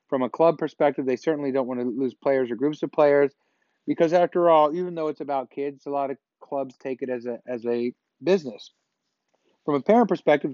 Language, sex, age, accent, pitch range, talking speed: English, male, 40-59, American, 125-145 Hz, 215 wpm